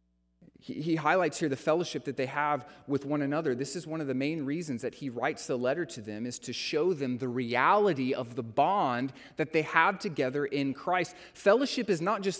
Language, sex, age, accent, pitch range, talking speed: English, male, 30-49, American, 135-195 Hz, 215 wpm